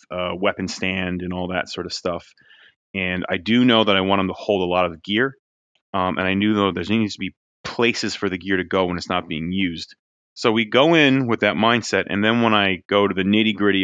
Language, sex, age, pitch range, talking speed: English, male, 30-49, 90-105 Hz, 260 wpm